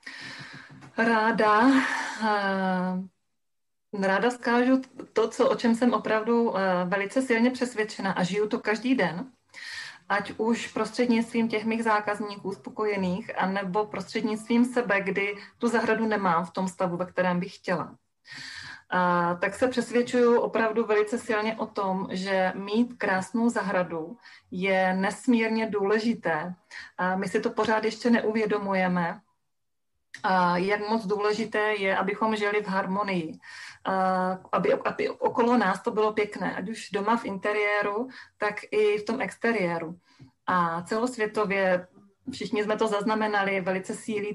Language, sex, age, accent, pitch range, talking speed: Czech, female, 30-49, native, 190-225 Hz, 125 wpm